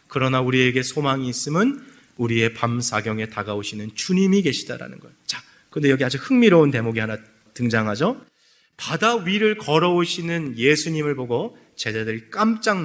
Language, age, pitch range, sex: Korean, 30-49, 115-160 Hz, male